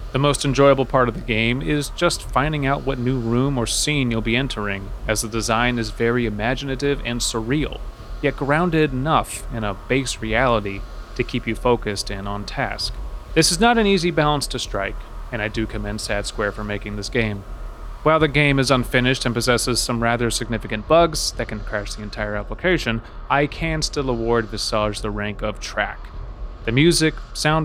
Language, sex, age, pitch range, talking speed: English, male, 30-49, 100-140 Hz, 190 wpm